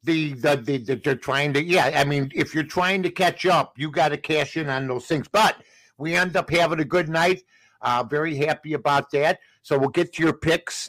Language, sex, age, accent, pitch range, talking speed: English, male, 60-79, American, 135-170 Hz, 235 wpm